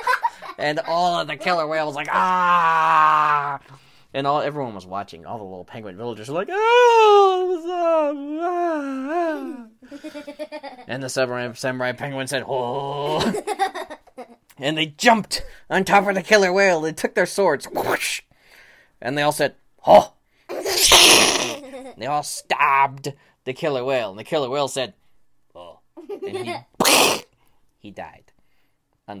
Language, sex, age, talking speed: English, male, 20-39, 135 wpm